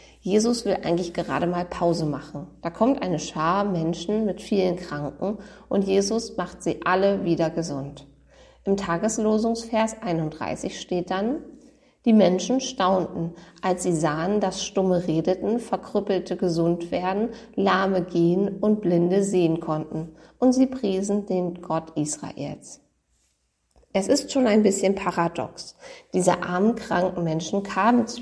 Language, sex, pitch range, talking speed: German, female, 170-215 Hz, 135 wpm